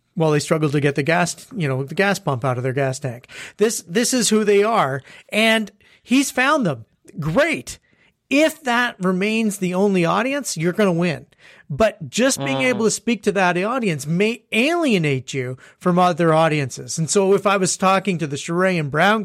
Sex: male